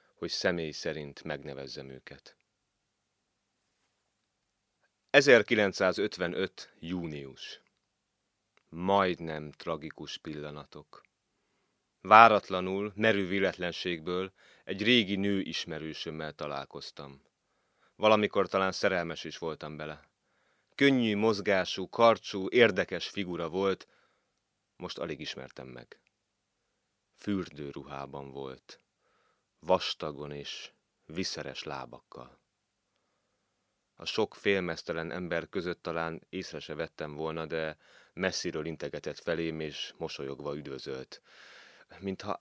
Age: 30-49